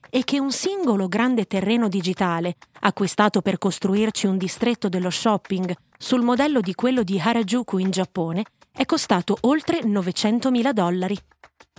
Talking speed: 135 wpm